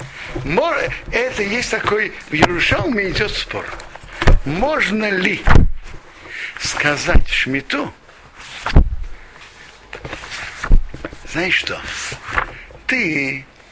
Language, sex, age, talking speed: Russian, male, 60-79, 65 wpm